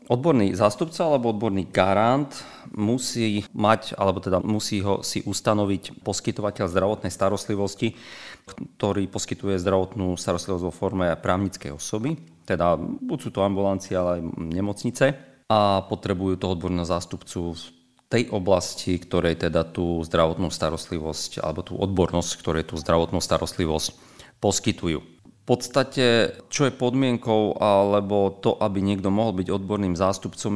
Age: 40-59